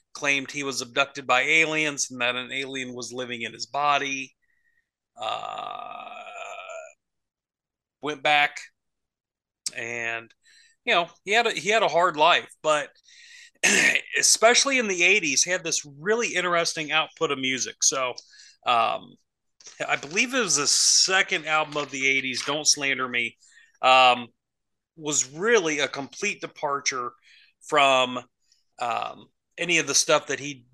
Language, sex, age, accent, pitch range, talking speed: English, male, 30-49, American, 130-205 Hz, 135 wpm